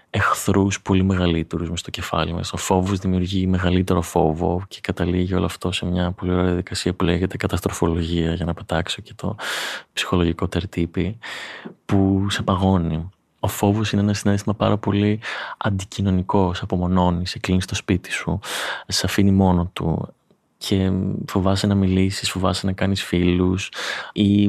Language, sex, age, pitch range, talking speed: Greek, male, 20-39, 90-100 Hz, 150 wpm